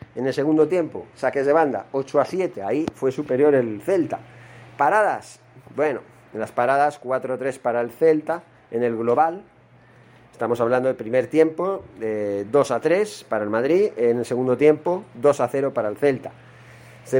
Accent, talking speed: Spanish, 185 wpm